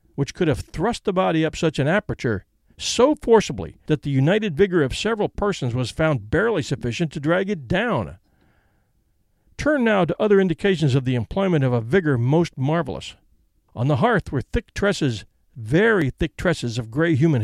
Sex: male